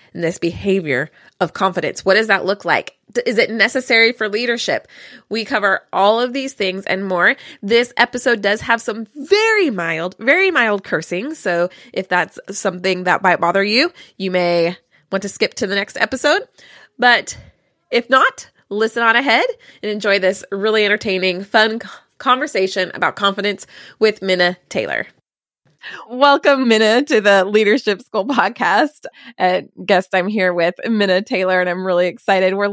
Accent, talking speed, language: American, 160 wpm, English